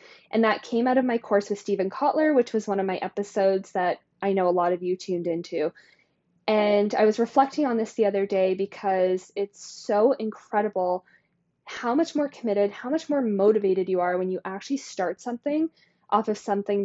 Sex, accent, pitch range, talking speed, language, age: female, American, 190-240 Hz, 200 wpm, English, 10-29